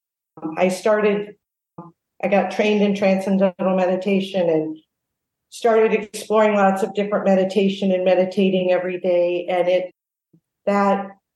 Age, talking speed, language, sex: 50-69, 115 wpm, English, female